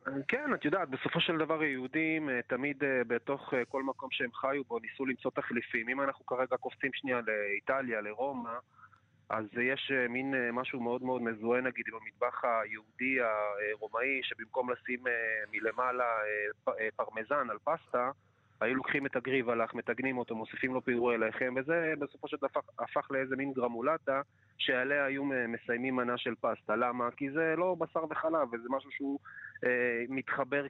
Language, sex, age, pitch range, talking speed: Hebrew, male, 30-49, 120-140 Hz, 145 wpm